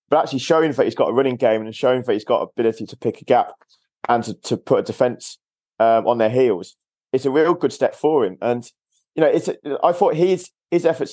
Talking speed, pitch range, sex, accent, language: 250 wpm, 115-150 Hz, male, British, English